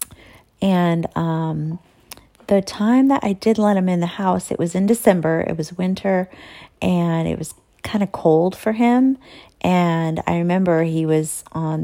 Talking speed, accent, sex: 165 wpm, American, female